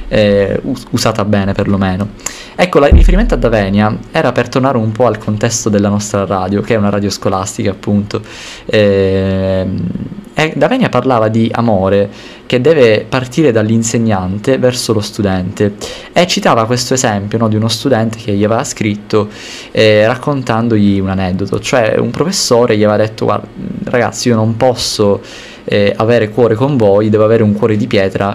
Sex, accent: male, native